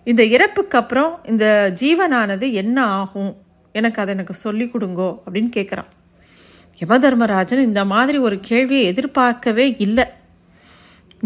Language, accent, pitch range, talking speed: Tamil, native, 210-255 Hz, 100 wpm